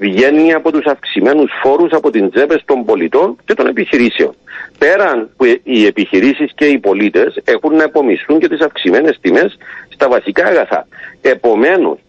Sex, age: male, 50-69